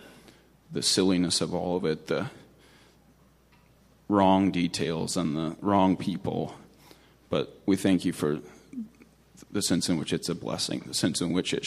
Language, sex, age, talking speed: English, male, 20-39, 155 wpm